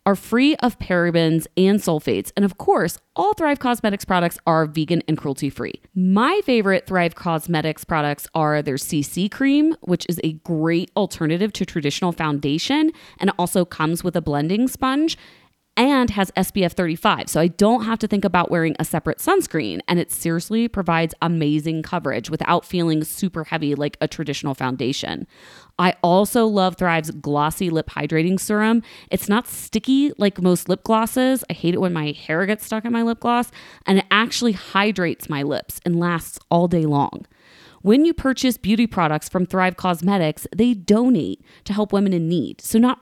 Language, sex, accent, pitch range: English, female, American, 165-220 Hz